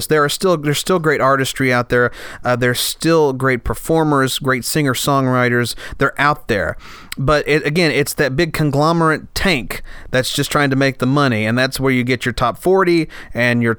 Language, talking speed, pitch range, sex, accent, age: English, 190 wpm, 125-160 Hz, male, American, 30-49